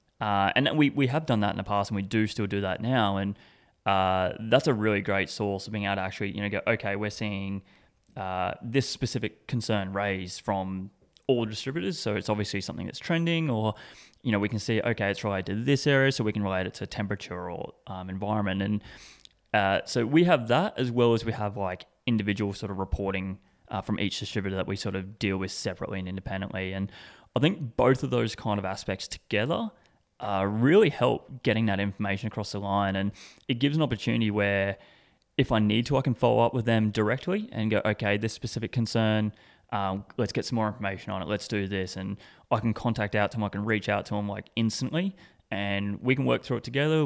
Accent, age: Australian, 20-39